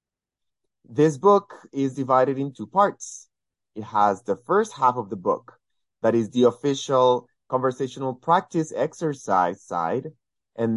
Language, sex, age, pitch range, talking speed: English, male, 30-49, 115-160 Hz, 135 wpm